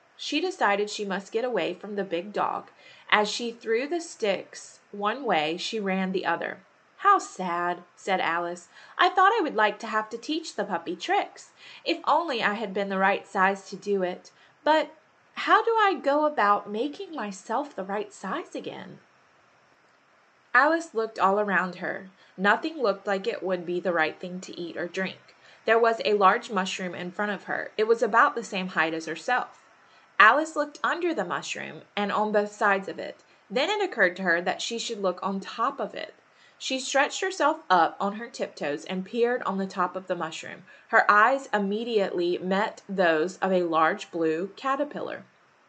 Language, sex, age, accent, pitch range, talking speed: English, female, 20-39, American, 185-265 Hz, 190 wpm